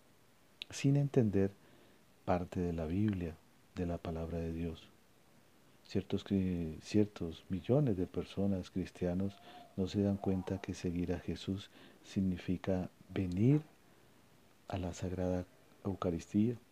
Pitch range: 90-105 Hz